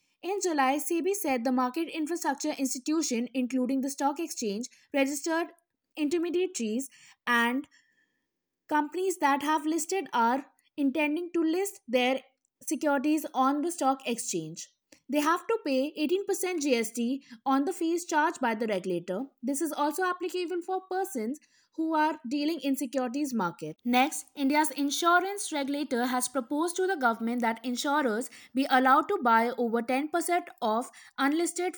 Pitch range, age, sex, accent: 255-325 Hz, 20-39, female, Indian